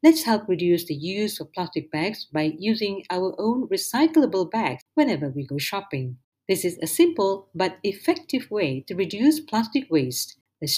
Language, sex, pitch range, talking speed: Malay, female, 155-245 Hz, 165 wpm